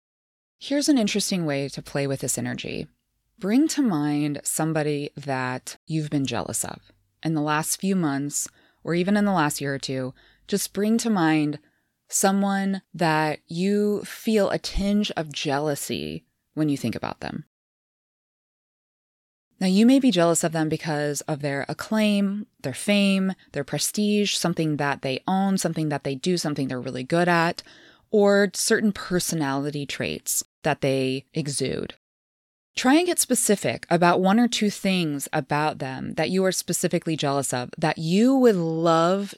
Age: 20-39